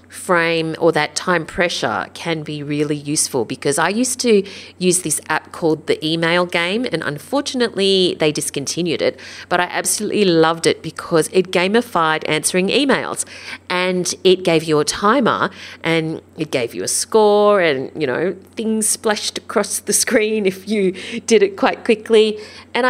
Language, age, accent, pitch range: English, 30-49, Australian, 155-210 Hz